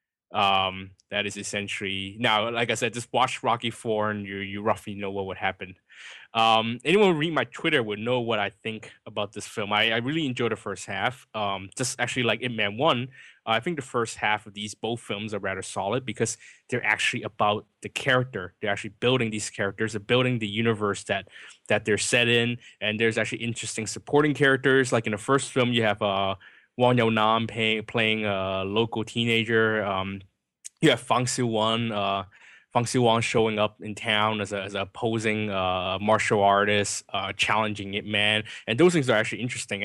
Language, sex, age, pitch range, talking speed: English, male, 20-39, 100-115 Hz, 195 wpm